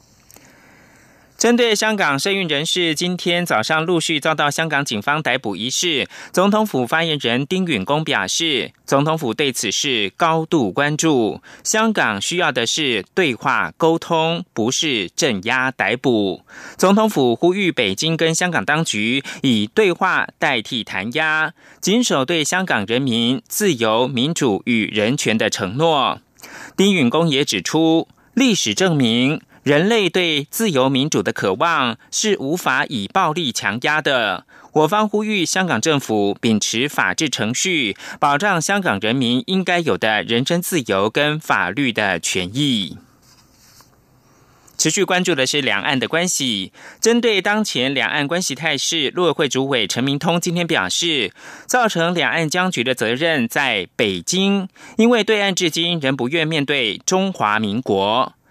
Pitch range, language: 130-185 Hz, German